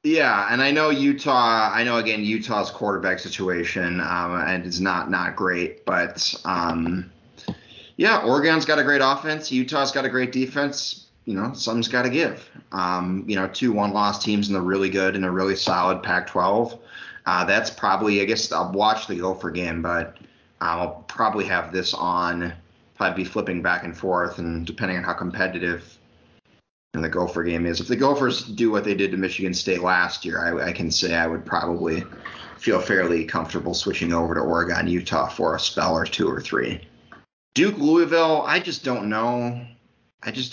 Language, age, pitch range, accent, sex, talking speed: English, 30-49, 90-130 Hz, American, male, 190 wpm